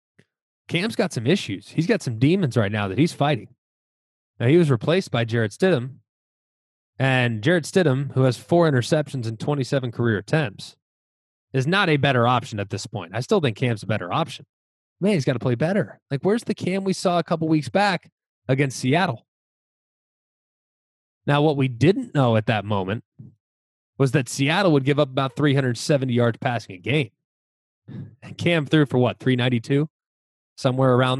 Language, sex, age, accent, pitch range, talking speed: English, male, 20-39, American, 115-155 Hz, 175 wpm